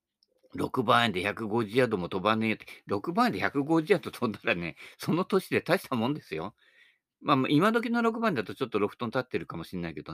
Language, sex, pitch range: Japanese, male, 95-145 Hz